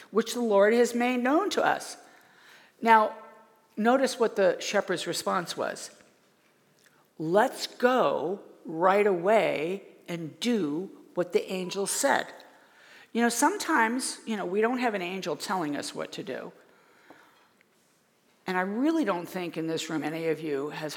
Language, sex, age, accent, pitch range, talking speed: English, female, 50-69, American, 175-250 Hz, 150 wpm